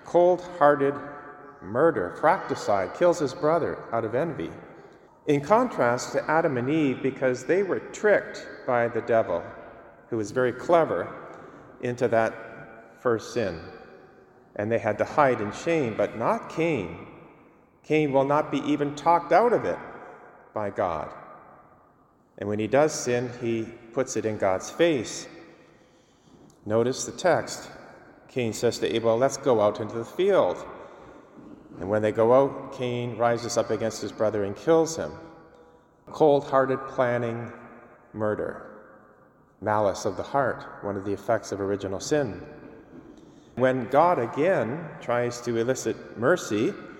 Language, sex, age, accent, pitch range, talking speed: English, male, 40-59, American, 110-145 Hz, 140 wpm